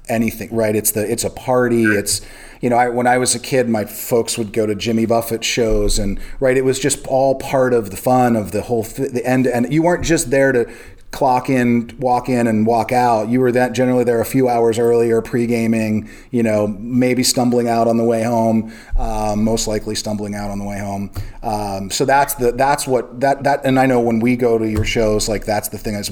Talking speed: 235 wpm